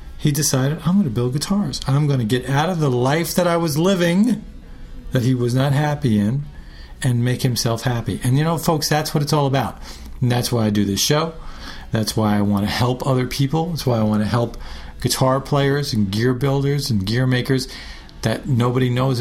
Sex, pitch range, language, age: male, 105-145 Hz, English, 40-59